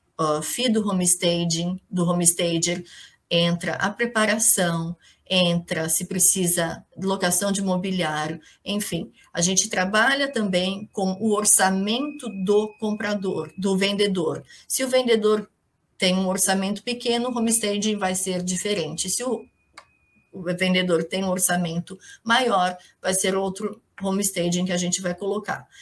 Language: Portuguese